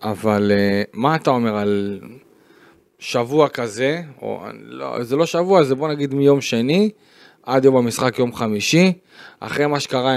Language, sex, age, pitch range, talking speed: Hebrew, male, 30-49, 120-160 Hz, 150 wpm